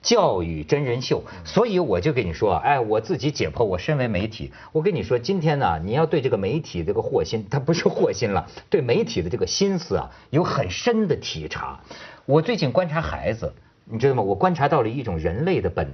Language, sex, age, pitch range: Chinese, male, 50-69, 115-185 Hz